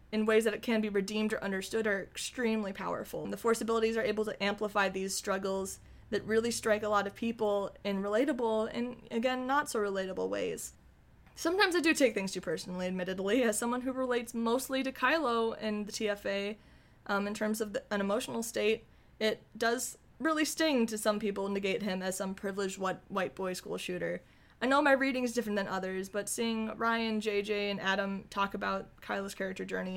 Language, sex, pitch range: English, female, 195-230 Hz